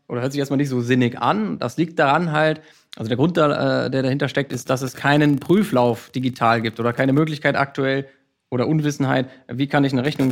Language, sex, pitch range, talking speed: German, male, 120-145 Hz, 210 wpm